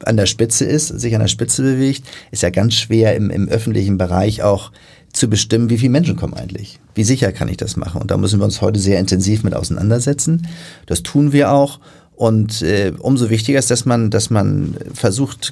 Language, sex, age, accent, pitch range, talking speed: German, male, 40-59, German, 100-125 Hz, 215 wpm